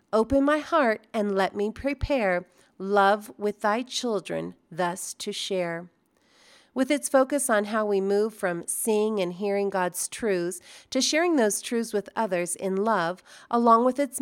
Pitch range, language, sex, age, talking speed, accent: 185-255 Hz, English, female, 40-59, 160 wpm, American